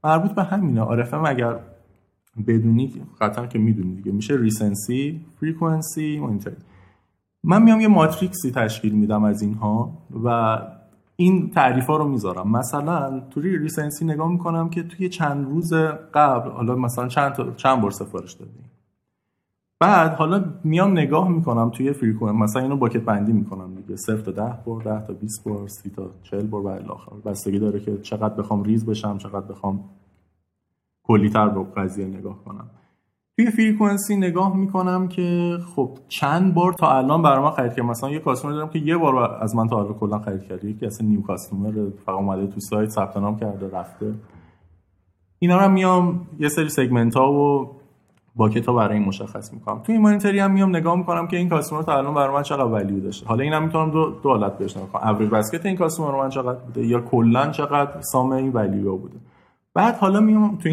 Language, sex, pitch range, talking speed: Persian, male, 105-160 Hz, 175 wpm